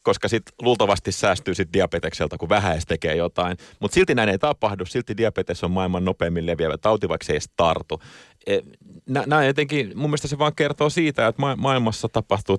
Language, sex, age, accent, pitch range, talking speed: Finnish, male, 30-49, native, 85-125 Hz, 185 wpm